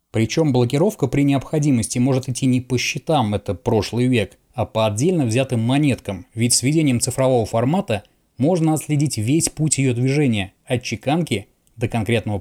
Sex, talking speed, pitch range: male, 155 wpm, 120-150 Hz